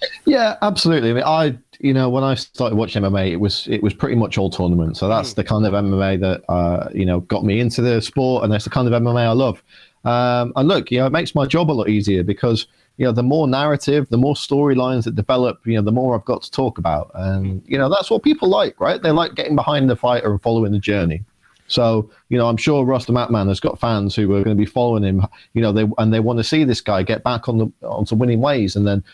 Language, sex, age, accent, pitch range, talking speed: English, male, 30-49, British, 105-130 Hz, 270 wpm